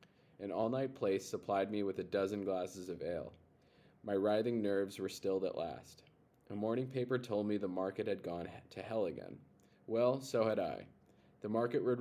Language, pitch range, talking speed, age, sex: English, 95-115 Hz, 185 wpm, 20-39, male